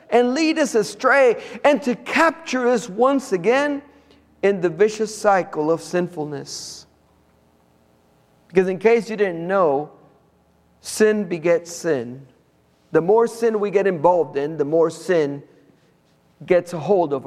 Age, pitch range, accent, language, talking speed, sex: 50-69, 165-275 Hz, American, English, 135 wpm, male